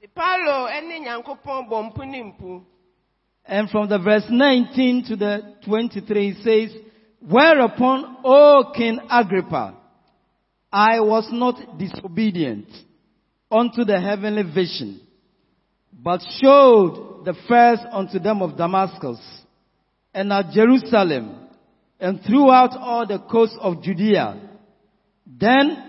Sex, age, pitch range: male, 50-69, 190-245 Hz